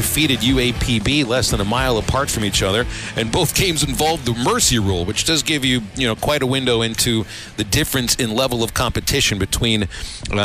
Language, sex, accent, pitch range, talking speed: English, male, American, 110-130 Hz, 200 wpm